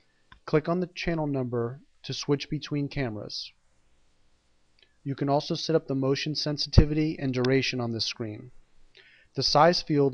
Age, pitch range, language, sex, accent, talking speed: 30-49, 125-145 Hz, English, male, American, 150 wpm